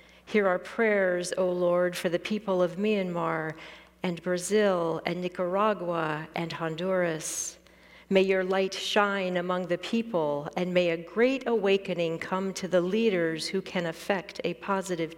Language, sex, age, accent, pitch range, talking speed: English, female, 40-59, American, 170-200 Hz, 145 wpm